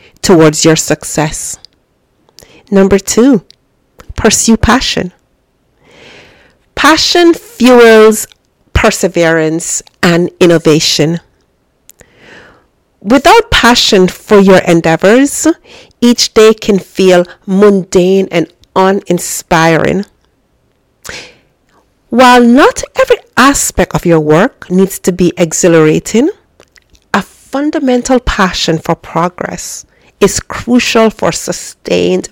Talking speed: 80 wpm